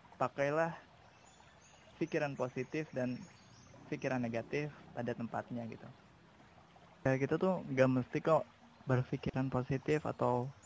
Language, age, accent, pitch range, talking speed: Indonesian, 20-39, native, 120-140 Hz, 105 wpm